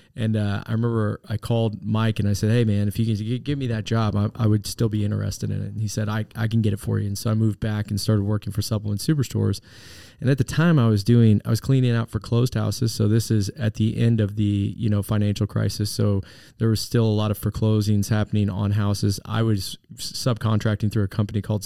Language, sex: English, male